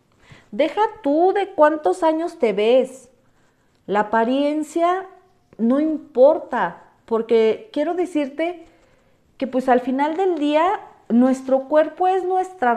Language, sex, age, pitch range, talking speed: Spanish, female, 40-59, 220-295 Hz, 115 wpm